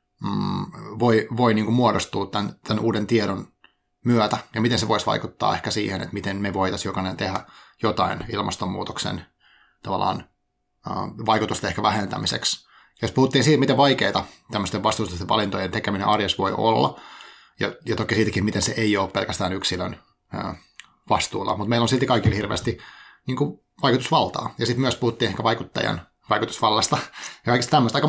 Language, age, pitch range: Finnish, 30-49, 105-120 Hz